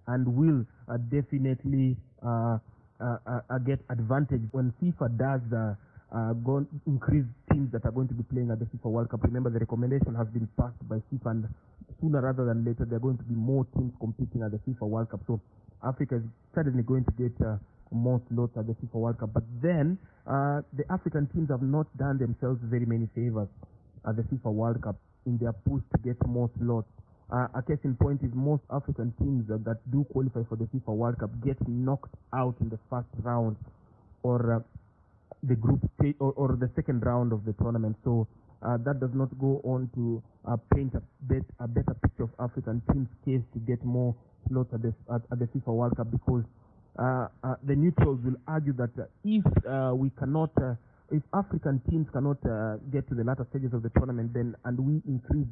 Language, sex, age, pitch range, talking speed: English, male, 30-49, 115-135 Hz, 210 wpm